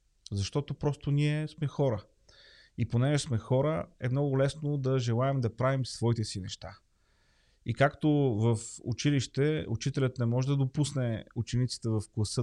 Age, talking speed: 30-49, 150 wpm